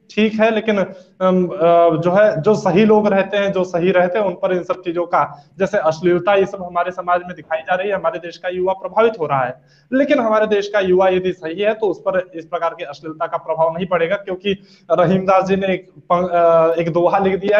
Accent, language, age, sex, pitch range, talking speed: native, Hindi, 20-39, male, 175-215 Hz, 230 wpm